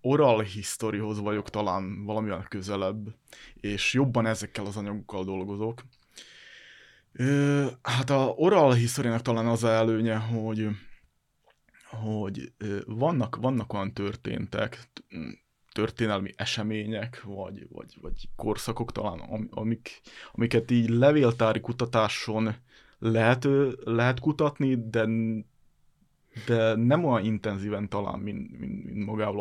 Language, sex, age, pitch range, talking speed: Hungarian, male, 20-39, 105-120 Hz, 100 wpm